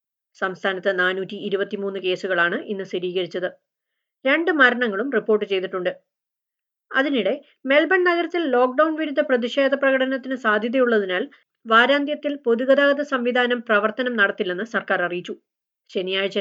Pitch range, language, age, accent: 205-260 Hz, Malayalam, 30-49, native